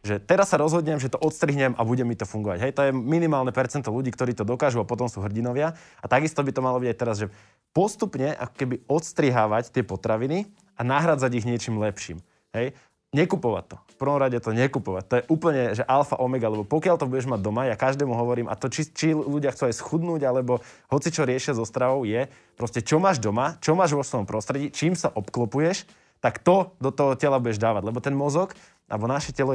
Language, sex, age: Slovak, male, 20-39